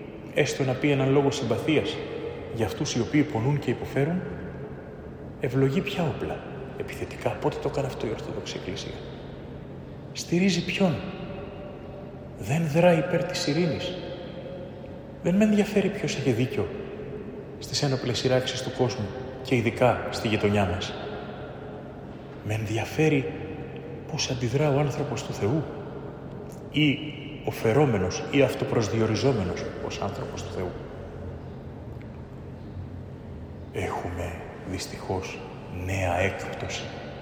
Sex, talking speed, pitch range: male, 105 wpm, 105-145 Hz